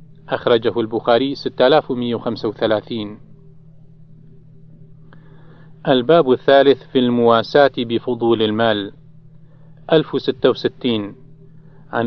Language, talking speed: Arabic, 50 wpm